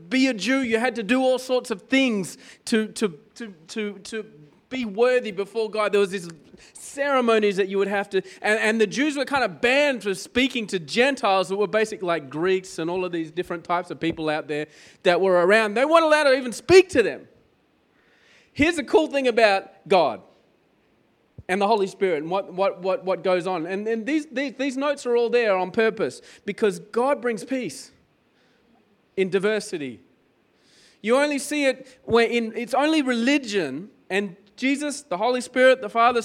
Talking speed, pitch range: 195 wpm, 180-250 Hz